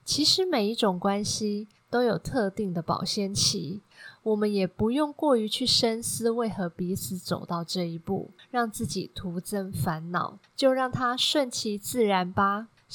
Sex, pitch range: female, 185-235 Hz